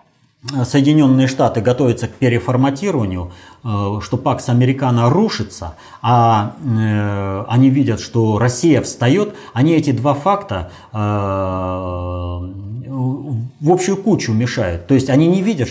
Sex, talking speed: male, 105 wpm